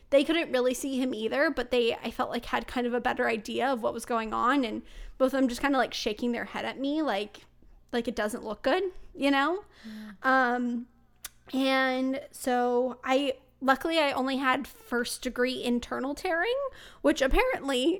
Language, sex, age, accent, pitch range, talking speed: English, female, 10-29, American, 250-290 Hz, 190 wpm